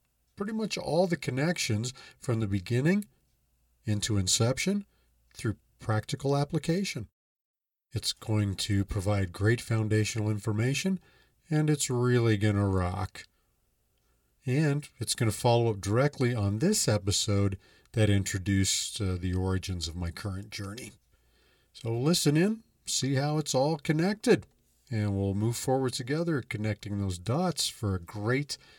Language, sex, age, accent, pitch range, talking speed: English, male, 40-59, American, 100-130 Hz, 135 wpm